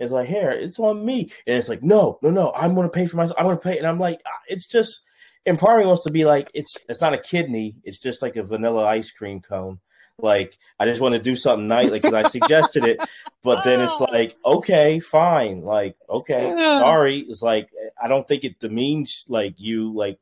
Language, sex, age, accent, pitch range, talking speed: English, male, 30-49, American, 115-180 Hz, 235 wpm